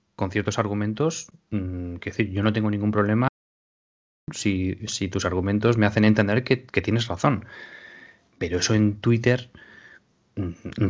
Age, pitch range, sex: 20-39, 100-125 Hz, male